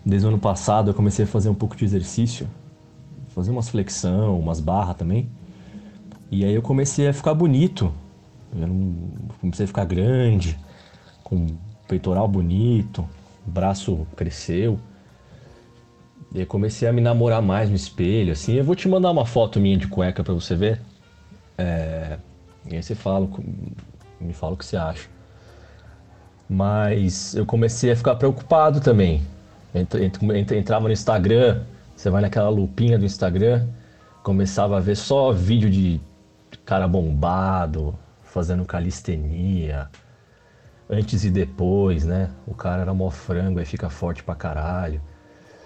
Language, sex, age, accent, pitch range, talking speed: Portuguese, male, 40-59, Brazilian, 90-115 Hz, 145 wpm